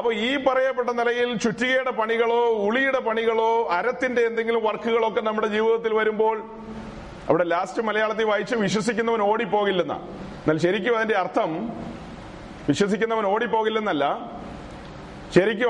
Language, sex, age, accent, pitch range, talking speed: Malayalam, male, 30-49, native, 200-235 Hz, 115 wpm